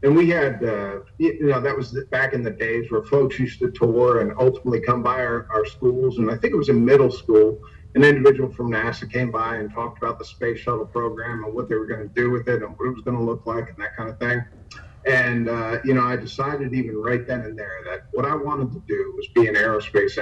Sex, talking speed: male, 260 wpm